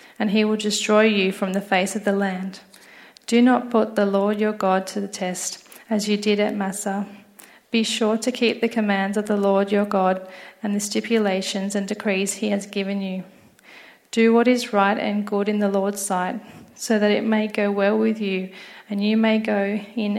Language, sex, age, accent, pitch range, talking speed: English, female, 30-49, Australian, 195-215 Hz, 205 wpm